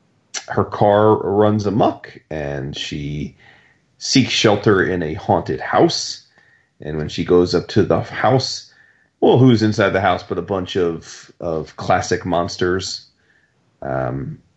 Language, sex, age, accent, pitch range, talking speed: English, male, 30-49, American, 90-115 Hz, 135 wpm